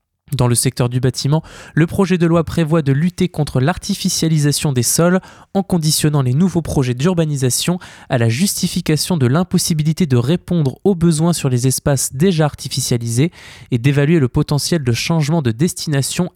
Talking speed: 160 wpm